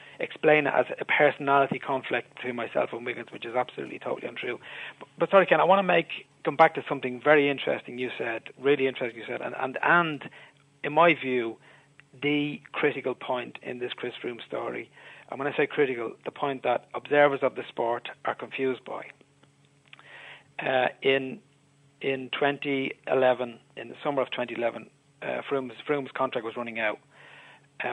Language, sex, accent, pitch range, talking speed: English, male, Irish, 120-145 Hz, 175 wpm